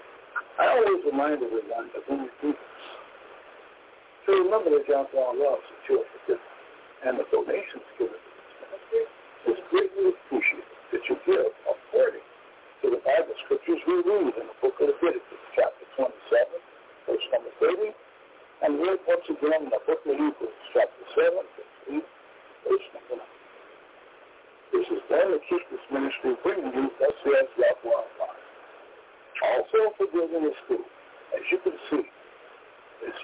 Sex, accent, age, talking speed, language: male, American, 60-79, 150 wpm, English